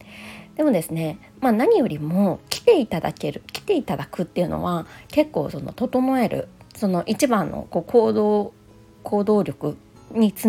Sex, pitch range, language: female, 170-240 Hz, Japanese